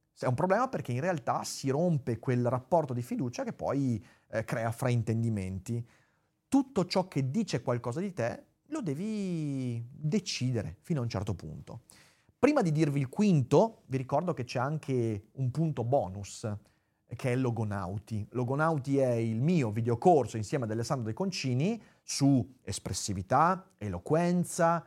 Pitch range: 115-155 Hz